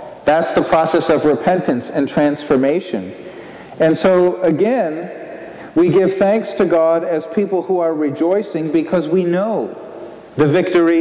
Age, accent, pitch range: 40-59, American, 160-190 Hz